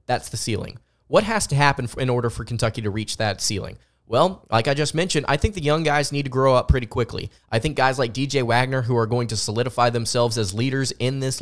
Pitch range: 115-140 Hz